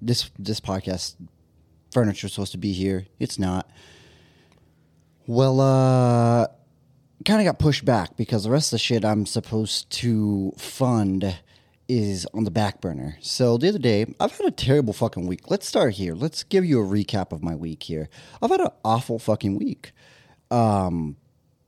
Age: 30-49